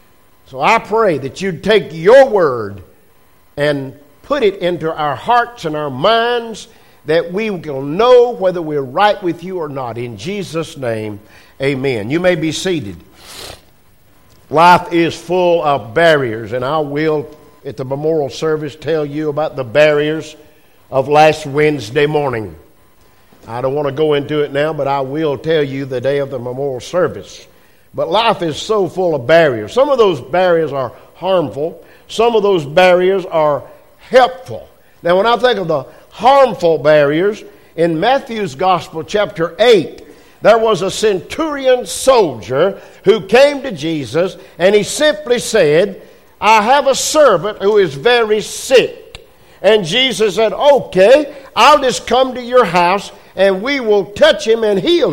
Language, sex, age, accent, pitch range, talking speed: English, male, 50-69, American, 145-220 Hz, 160 wpm